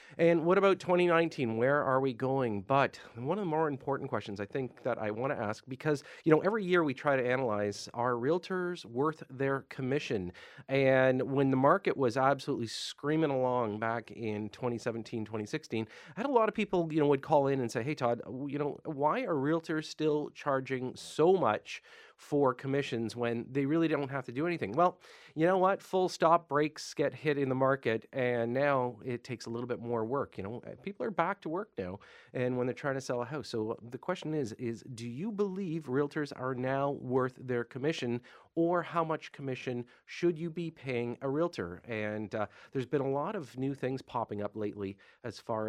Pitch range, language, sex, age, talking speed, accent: 120-155 Hz, English, male, 40-59, 205 wpm, American